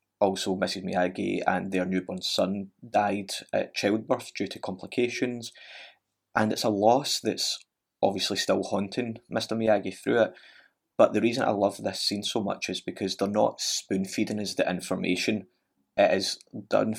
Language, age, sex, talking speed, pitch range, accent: English, 20-39, male, 160 wpm, 90-105 Hz, British